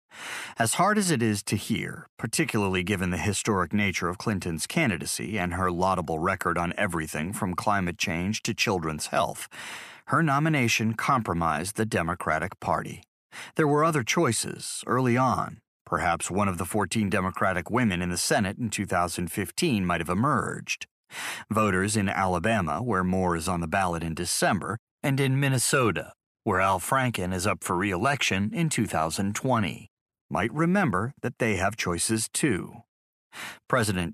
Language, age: English, 40-59